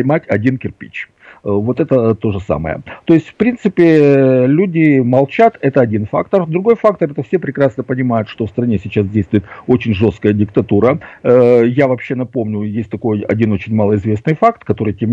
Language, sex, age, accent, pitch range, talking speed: Russian, male, 50-69, native, 105-135 Hz, 165 wpm